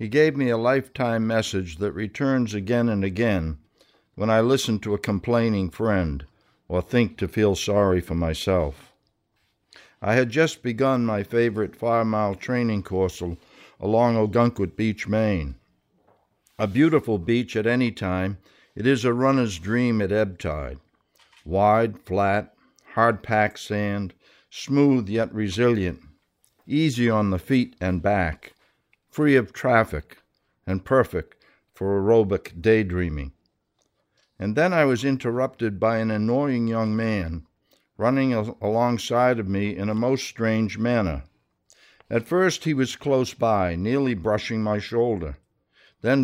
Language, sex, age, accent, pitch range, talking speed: English, male, 60-79, American, 95-120 Hz, 135 wpm